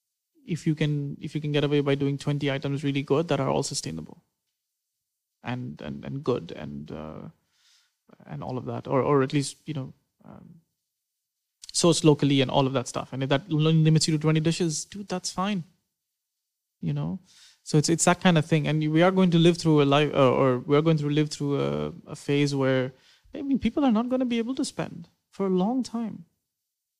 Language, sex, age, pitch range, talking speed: English, male, 30-49, 145-175 Hz, 215 wpm